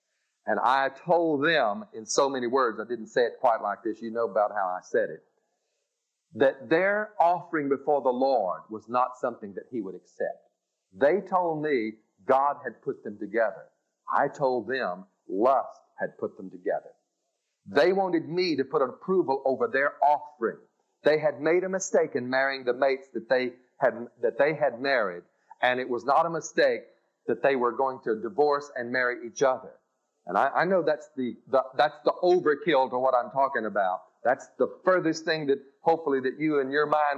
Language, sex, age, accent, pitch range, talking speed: English, male, 40-59, American, 130-180 Hz, 190 wpm